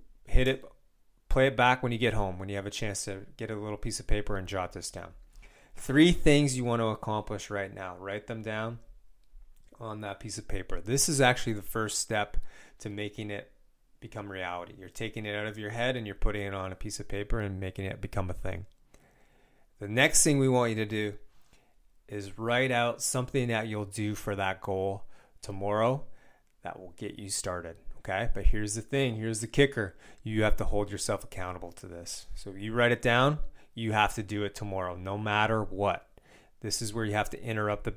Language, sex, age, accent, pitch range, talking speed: English, male, 30-49, American, 100-115 Hz, 215 wpm